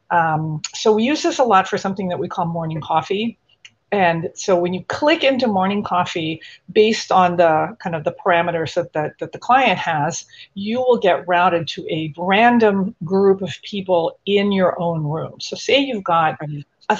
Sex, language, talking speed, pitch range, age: female, English, 185 wpm, 170-215 Hz, 40-59